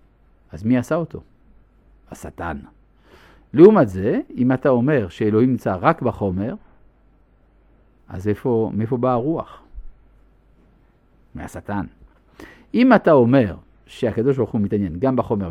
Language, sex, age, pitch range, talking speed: Hebrew, male, 50-69, 105-155 Hz, 110 wpm